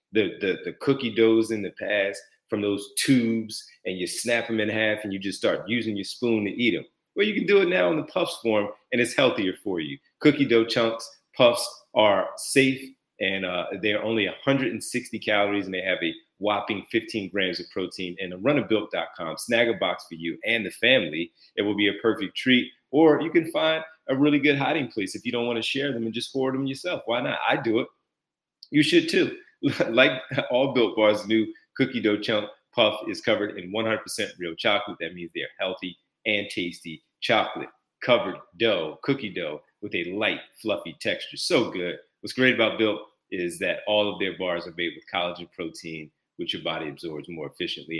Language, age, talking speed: English, 30-49, 205 wpm